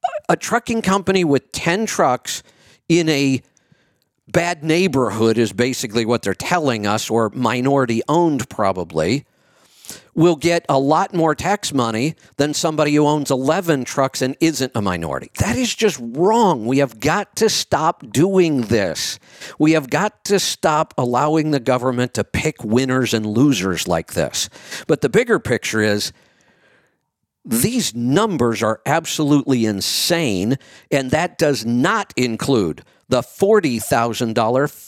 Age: 50-69